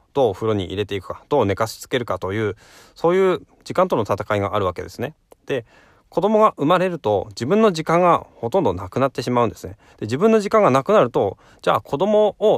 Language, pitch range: Japanese, 100-165 Hz